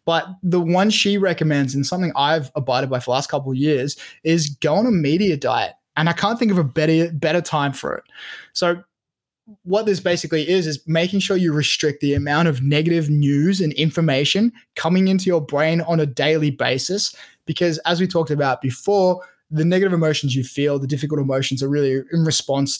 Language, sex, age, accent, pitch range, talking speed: English, male, 20-39, Australian, 140-175 Hz, 200 wpm